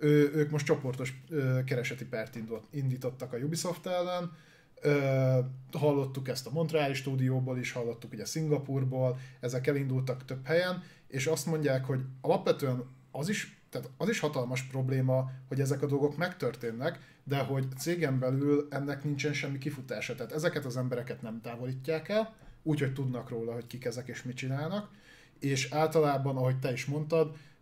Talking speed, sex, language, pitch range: 150 wpm, male, Hungarian, 125-150 Hz